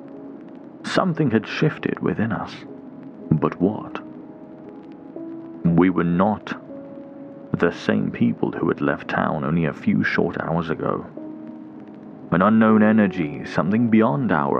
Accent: British